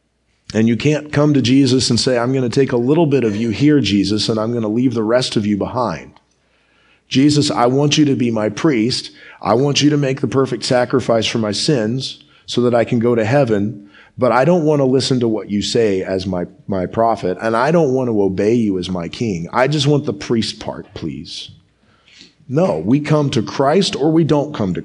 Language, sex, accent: English, male, American